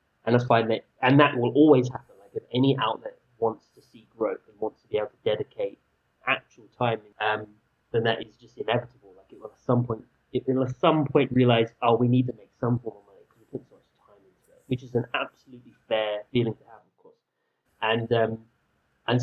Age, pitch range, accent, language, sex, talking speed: 30-49, 115-150 Hz, British, English, male, 230 wpm